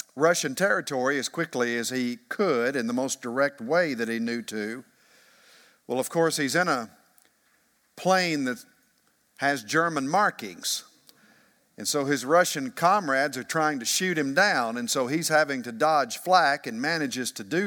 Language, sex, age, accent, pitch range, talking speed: English, male, 50-69, American, 125-170 Hz, 165 wpm